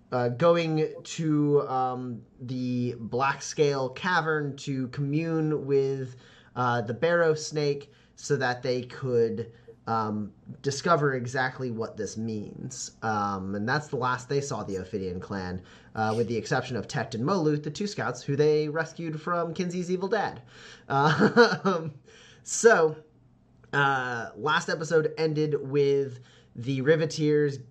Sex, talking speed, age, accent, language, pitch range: male, 130 wpm, 30-49, American, English, 120-155 Hz